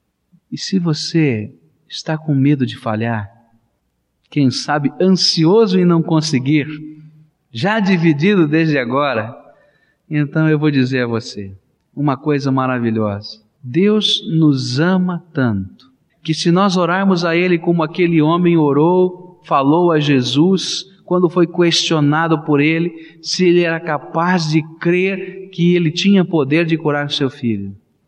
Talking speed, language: 135 wpm, Portuguese